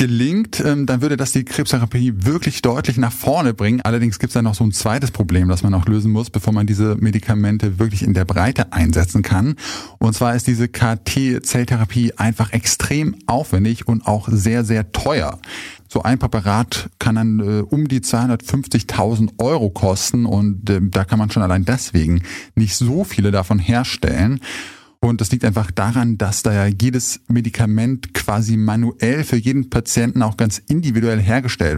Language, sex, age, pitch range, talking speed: German, male, 20-39, 105-125 Hz, 170 wpm